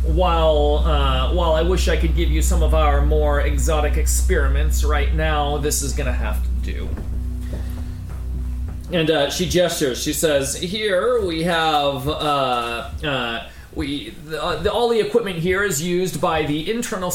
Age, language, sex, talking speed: 30-49, English, male, 170 wpm